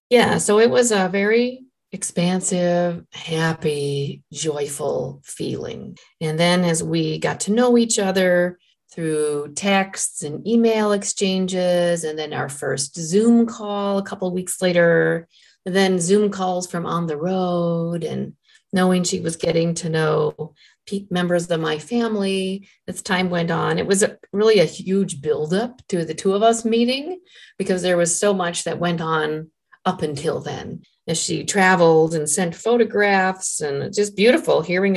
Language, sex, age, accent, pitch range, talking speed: English, female, 40-59, American, 160-205 Hz, 155 wpm